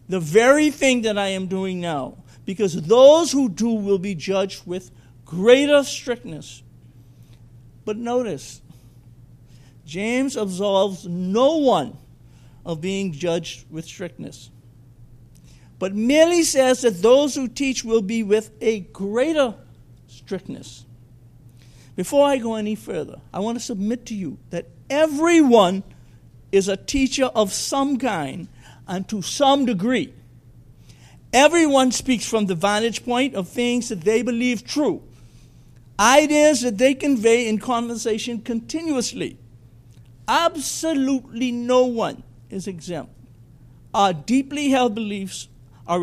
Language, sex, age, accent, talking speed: English, male, 50-69, American, 125 wpm